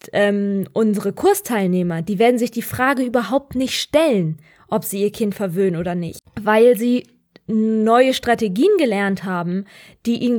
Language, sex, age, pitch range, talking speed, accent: German, female, 20-39, 205-240 Hz, 155 wpm, German